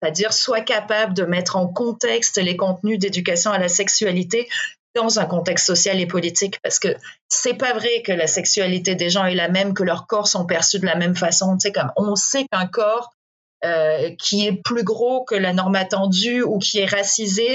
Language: French